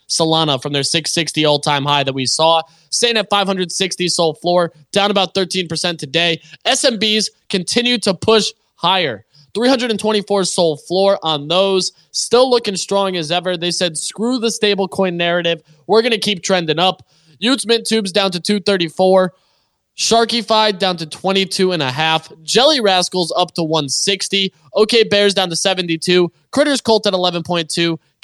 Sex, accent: male, American